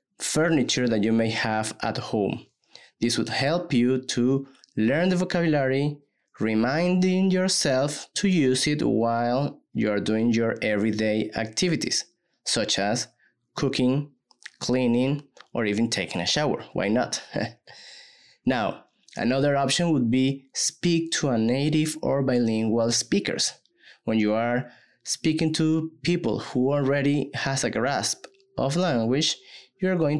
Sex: male